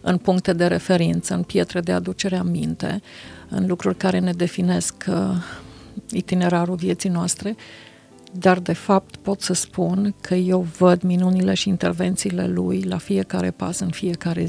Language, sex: Romanian, female